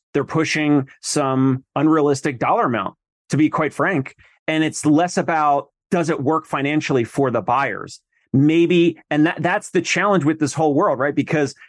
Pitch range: 130-155 Hz